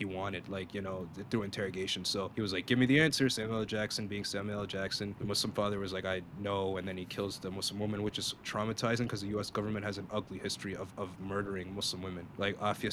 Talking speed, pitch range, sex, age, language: 240 wpm, 100-115 Hz, male, 20-39, English